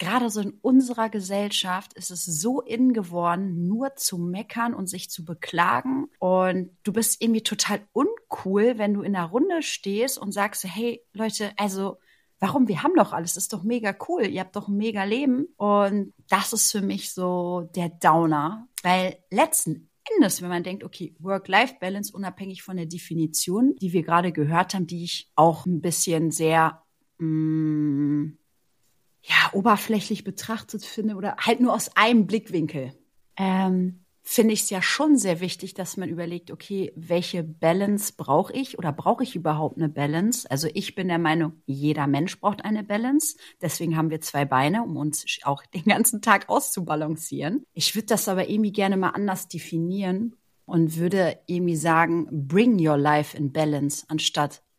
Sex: female